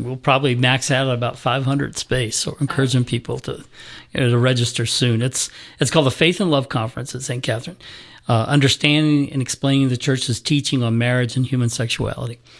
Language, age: English, 50-69